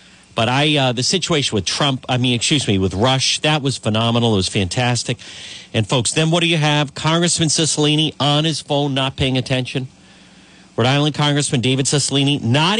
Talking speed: 190 wpm